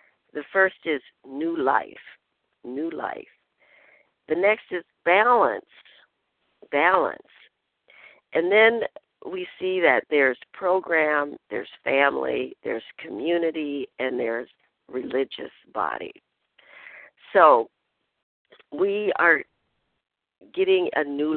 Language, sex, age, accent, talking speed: English, female, 60-79, American, 95 wpm